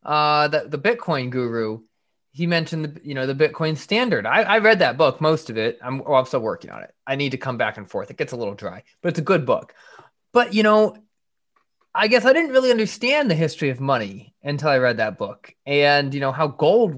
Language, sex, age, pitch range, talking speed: English, male, 20-39, 130-170 Hz, 240 wpm